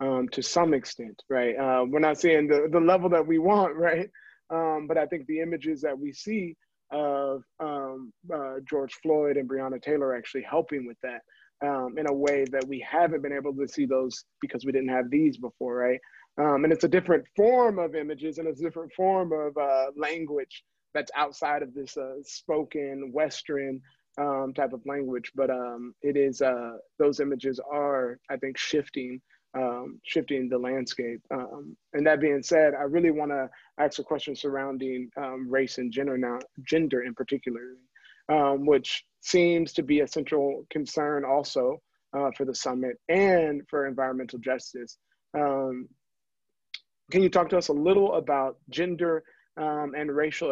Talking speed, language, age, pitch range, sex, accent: 175 wpm, English, 30-49, 135-155 Hz, male, American